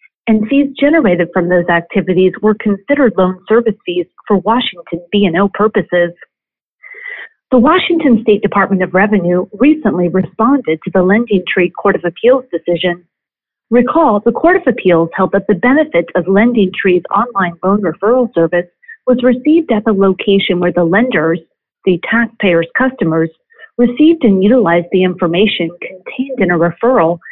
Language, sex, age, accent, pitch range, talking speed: English, female, 40-59, American, 180-245 Hz, 145 wpm